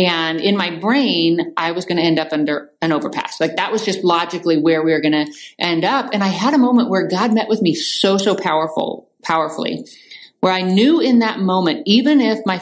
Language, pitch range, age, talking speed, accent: English, 165-230 Hz, 30-49, 230 wpm, American